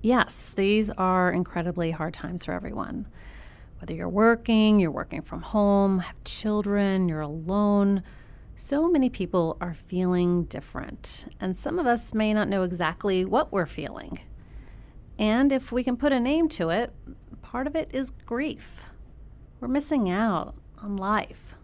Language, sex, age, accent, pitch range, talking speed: English, female, 30-49, American, 170-215 Hz, 155 wpm